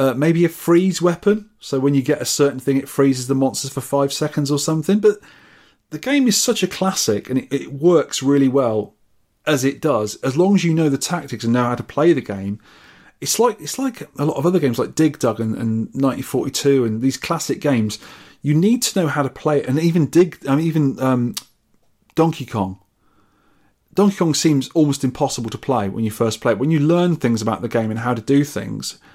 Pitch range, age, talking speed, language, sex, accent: 120-160 Hz, 30-49, 230 wpm, English, male, British